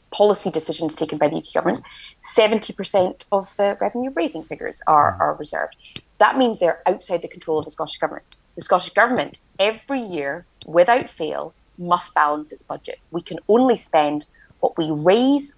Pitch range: 160-220 Hz